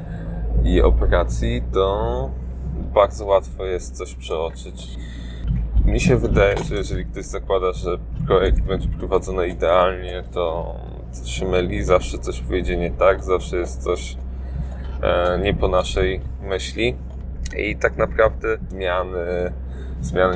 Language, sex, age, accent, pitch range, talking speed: Polish, male, 20-39, native, 65-90 Hz, 120 wpm